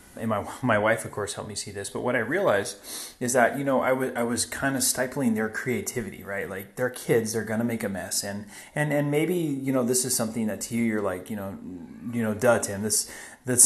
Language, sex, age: English, male, 30-49